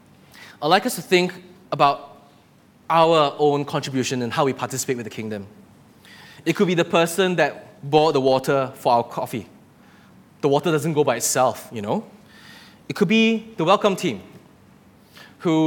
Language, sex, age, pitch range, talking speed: English, male, 20-39, 135-180 Hz, 165 wpm